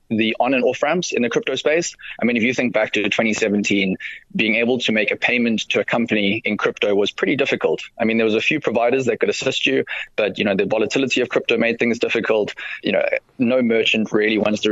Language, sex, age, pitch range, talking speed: English, male, 20-39, 110-130 Hz, 240 wpm